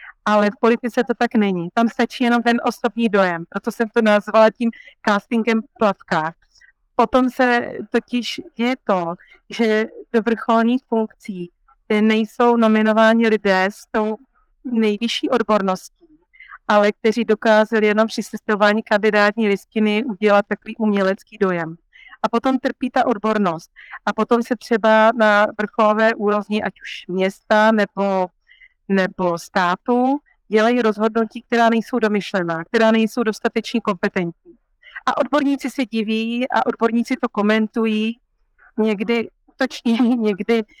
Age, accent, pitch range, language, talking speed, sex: 30-49, native, 205-235 Hz, Czech, 125 wpm, female